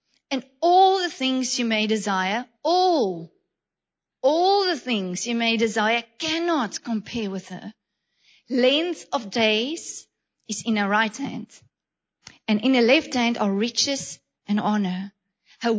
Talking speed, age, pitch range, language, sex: 135 wpm, 40-59, 220-290 Hz, English, female